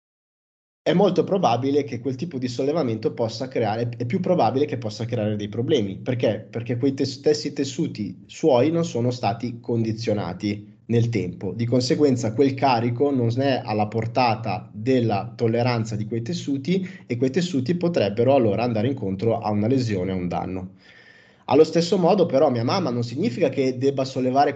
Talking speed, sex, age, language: 165 wpm, male, 30-49, Italian